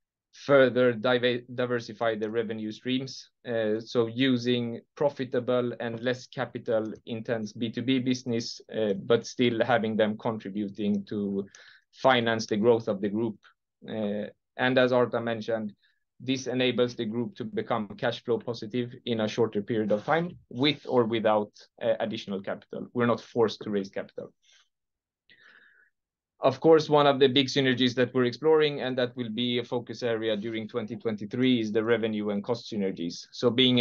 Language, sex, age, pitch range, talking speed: Swedish, male, 30-49, 110-130 Hz, 155 wpm